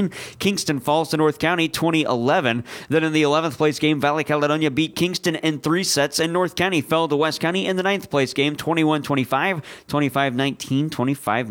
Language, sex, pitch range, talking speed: English, male, 145-180 Hz, 175 wpm